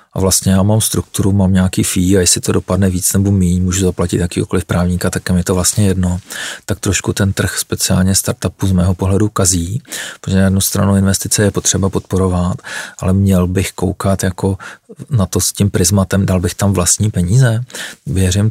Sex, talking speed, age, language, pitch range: male, 190 wpm, 40-59, Czech, 90-100 Hz